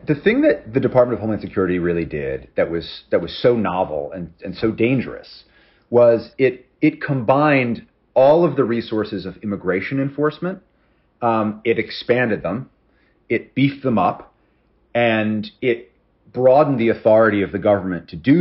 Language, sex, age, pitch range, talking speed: English, male, 30-49, 100-130 Hz, 160 wpm